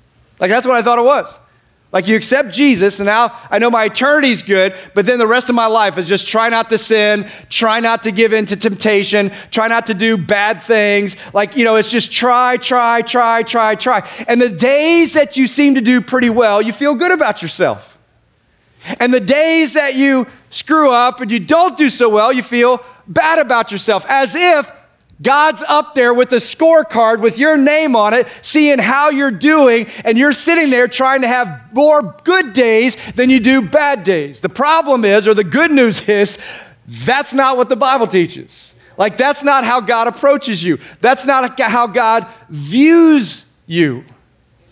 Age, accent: 30-49, American